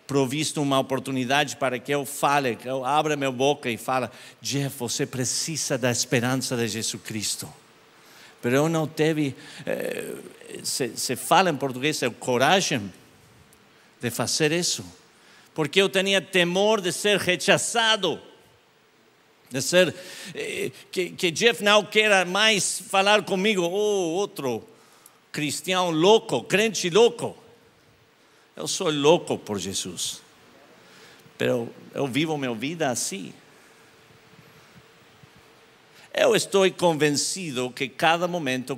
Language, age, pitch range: Portuguese, 50-69, 120-175 Hz